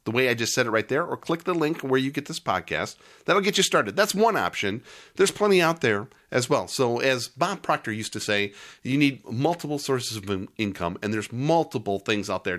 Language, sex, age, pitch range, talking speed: English, male, 40-59, 110-150 Hz, 235 wpm